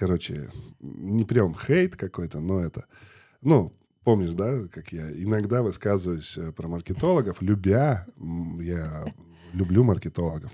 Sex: male